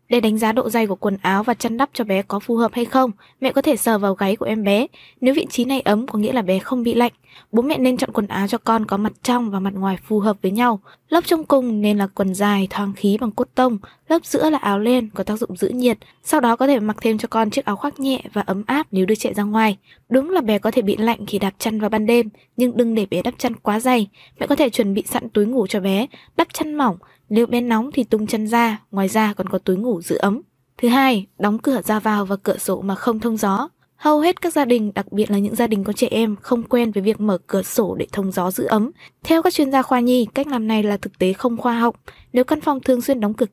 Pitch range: 205-250 Hz